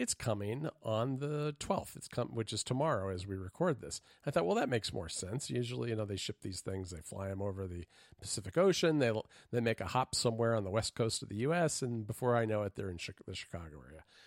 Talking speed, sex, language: 250 wpm, male, English